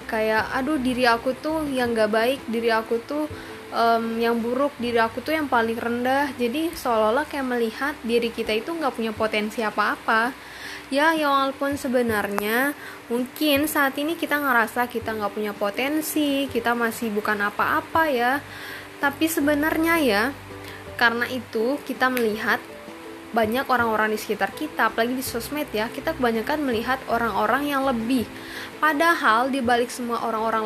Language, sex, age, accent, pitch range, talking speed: Indonesian, female, 10-29, native, 225-280 Hz, 145 wpm